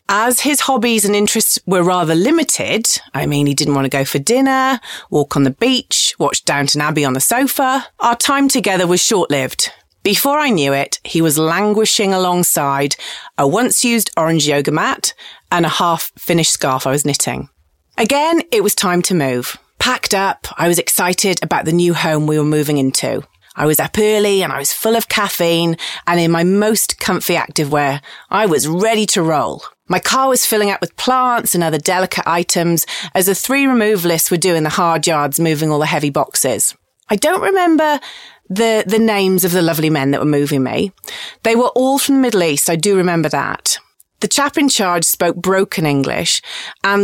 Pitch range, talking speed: 160-230 Hz, 190 wpm